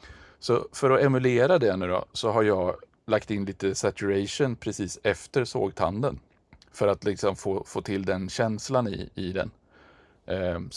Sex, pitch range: male, 100-120 Hz